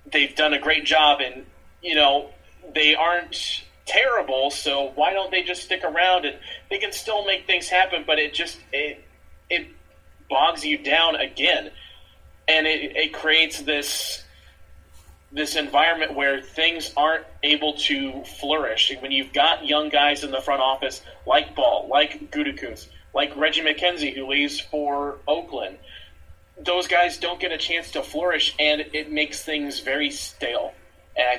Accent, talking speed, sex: American, 160 wpm, male